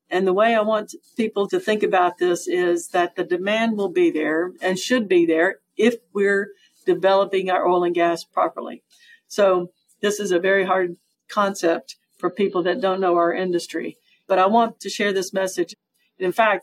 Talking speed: 190 wpm